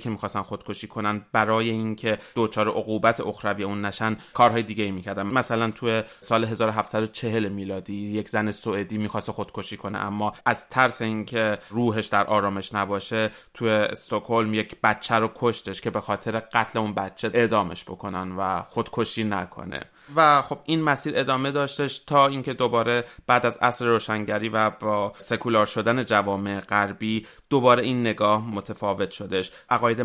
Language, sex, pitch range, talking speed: Persian, male, 105-120 Hz, 155 wpm